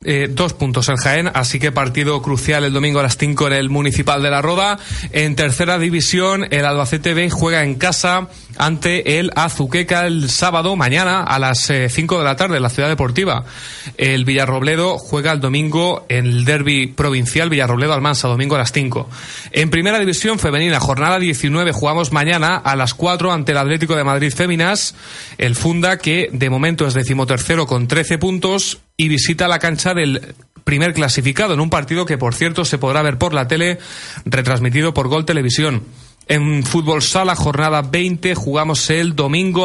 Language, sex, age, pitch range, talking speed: Spanish, male, 30-49, 135-170 Hz, 180 wpm